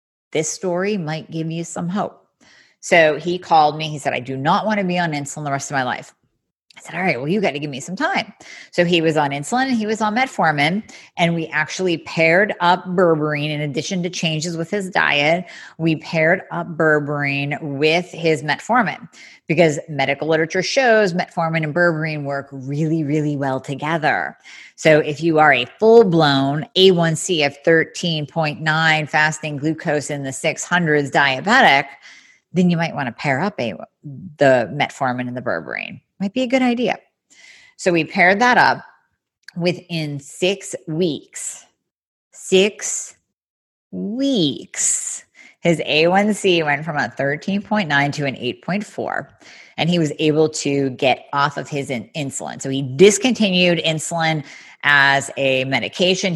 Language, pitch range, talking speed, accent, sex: English, 145-185 Hz, 160 wpm, American, female